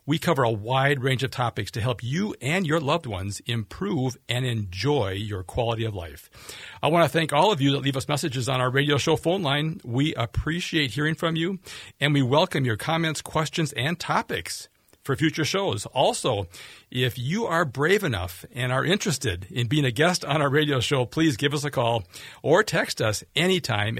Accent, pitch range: American, 115-155 Hz